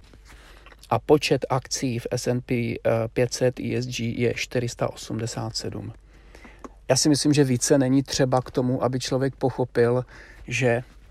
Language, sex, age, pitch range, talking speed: Czech, male, 40-59, 120-135 Hz, 120 wpm